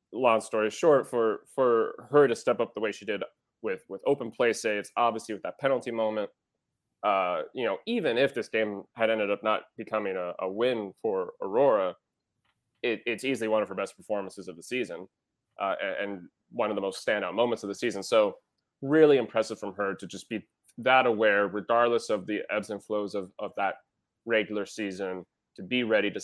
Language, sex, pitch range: English, male, 105-135 Hz